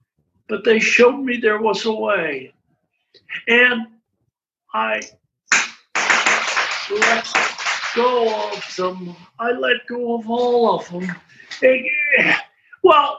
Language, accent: English, American